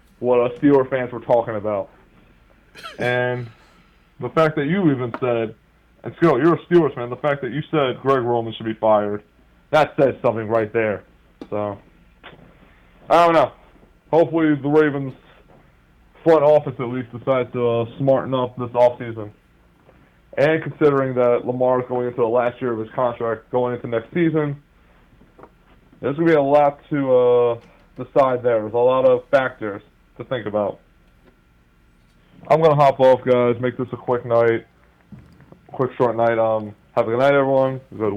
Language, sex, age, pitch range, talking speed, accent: English, male, 20-39, 115-145 Hz, 175 wpm, American